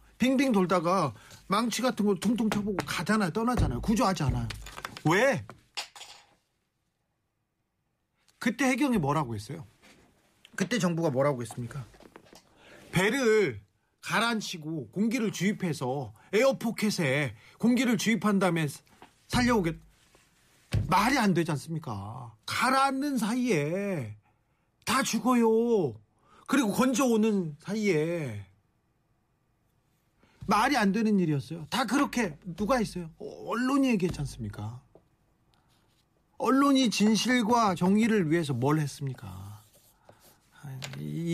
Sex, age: male, 40-59